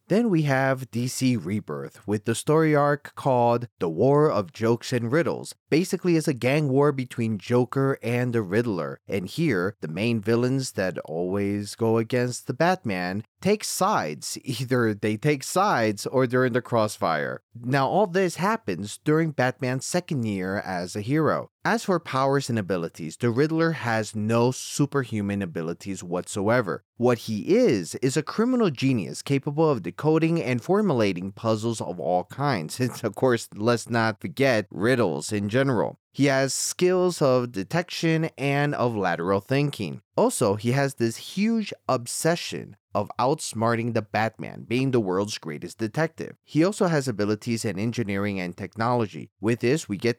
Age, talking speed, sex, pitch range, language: 30-49, 160 wpm, male, 110-145 Hz, English